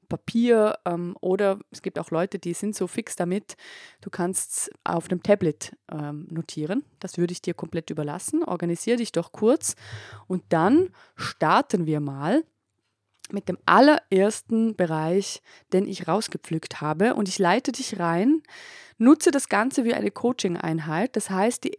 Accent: German